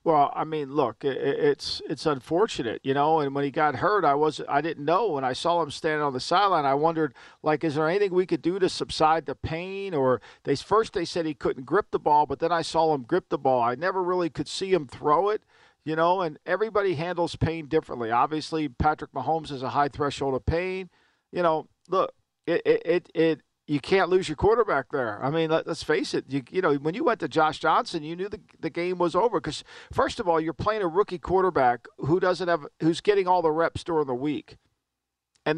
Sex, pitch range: male, 150-195 Hz